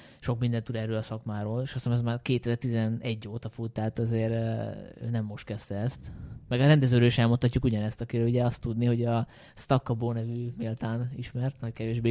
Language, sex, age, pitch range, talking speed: Hungarian, male, 20-39, 110-130 Hz, 190 wpm